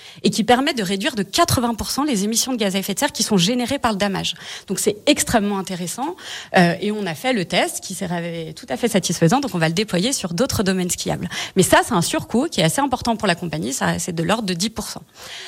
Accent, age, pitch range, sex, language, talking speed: French, 30-49, 175-230 Hz, female, French, 260 wpm